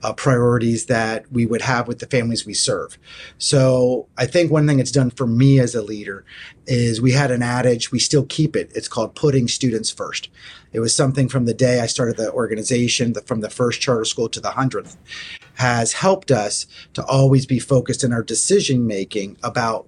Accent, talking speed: American, 200 wpm